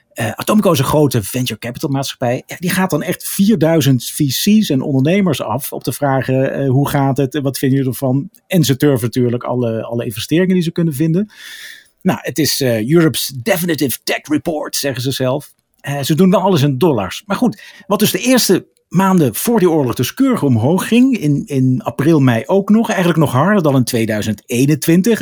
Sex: male